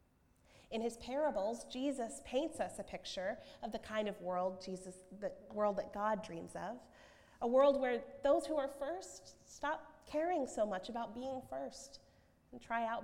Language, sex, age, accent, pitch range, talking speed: English, female, 30-49, American, 190-270 Hz, 170 wpm